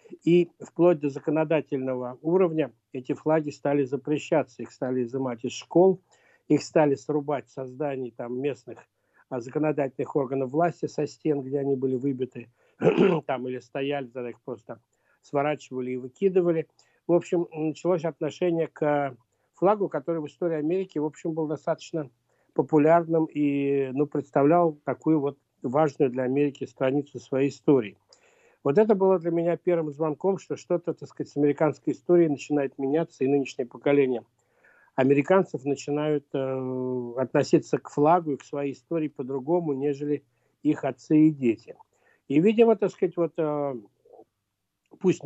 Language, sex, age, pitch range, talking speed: Russian, male, 60-79, 130-160 Hz, 135 wpm